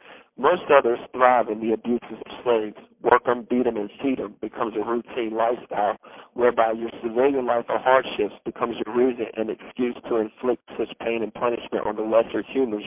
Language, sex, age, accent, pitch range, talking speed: English, male, 50-69, American, 115-135 Hz, 185 wpm